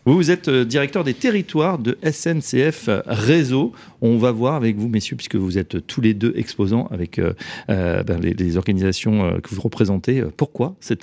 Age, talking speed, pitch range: 40-59, 175 wpm, 105-135 Hz